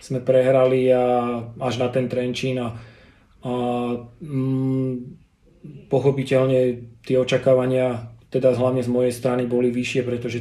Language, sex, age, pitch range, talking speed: Slovak, male, 30-49, 120-130 Hz, 115 wpm